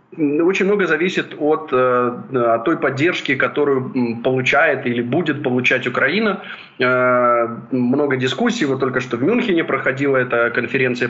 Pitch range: 125-155 Hz